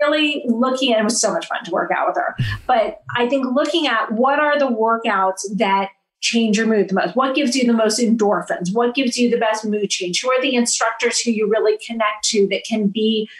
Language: English